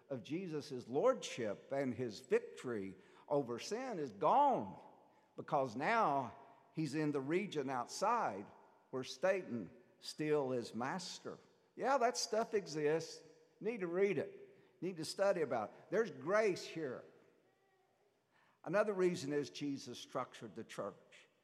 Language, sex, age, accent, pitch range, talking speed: English, male, 60-79, American, 150-205 Hz, 125 wpm